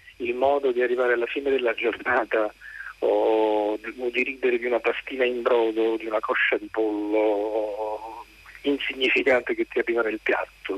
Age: 50-69